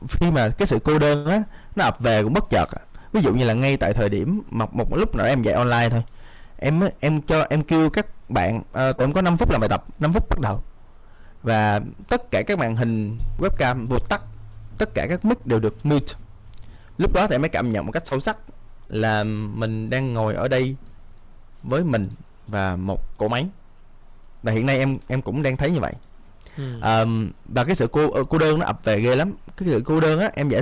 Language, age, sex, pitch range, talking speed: Vietnamese, 20-39, male, 105-155 Hz, 225 wpm